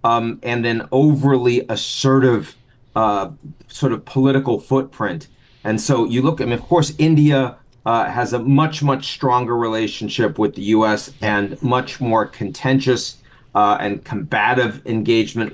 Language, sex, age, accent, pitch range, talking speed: English, male, 40-59, American, 115-130 Hz, 150 wpm